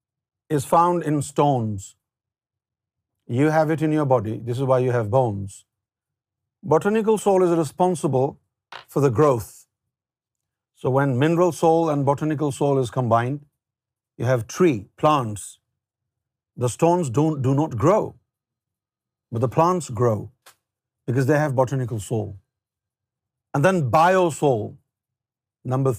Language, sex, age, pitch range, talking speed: Urdu, male, 50-69, 115-145 Hz, 125 wpm